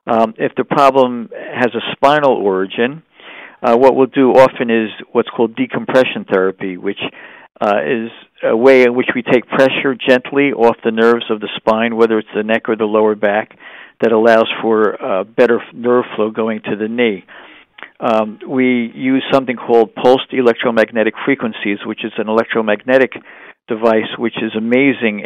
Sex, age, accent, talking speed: male, 50-69, American, 165 wpm